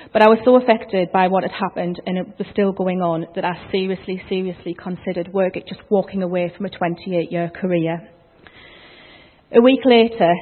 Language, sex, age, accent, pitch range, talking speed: English, female, 40-59, British, 175-200 Hz, 190 wpm